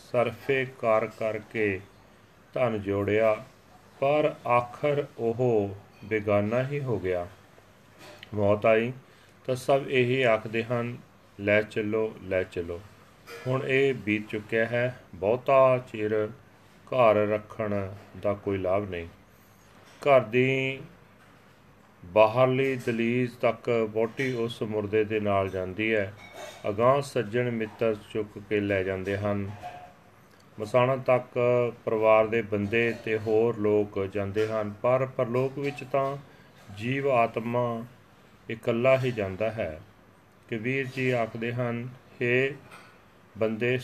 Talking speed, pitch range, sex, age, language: 110 wpm, 105-125 Hz, male, 40-59, Punjabi